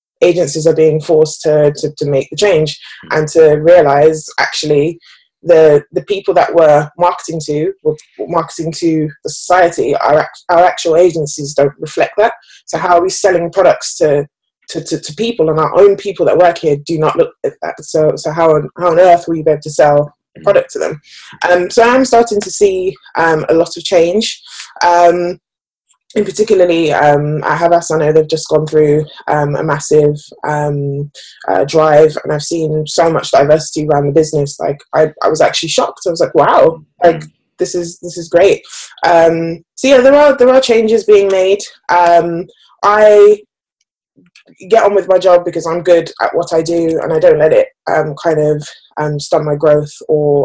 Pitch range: 150-180 Hz